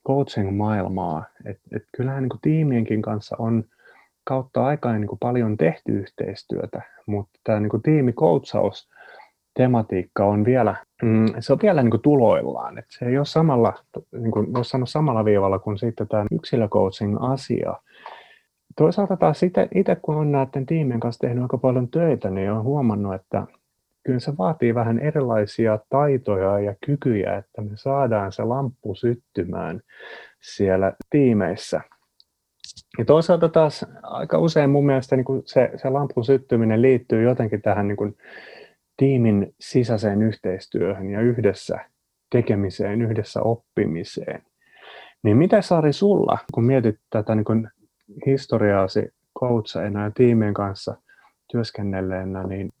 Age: 30-49